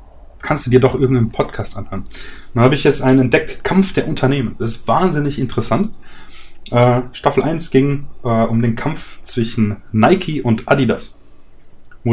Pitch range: 115-135 Hz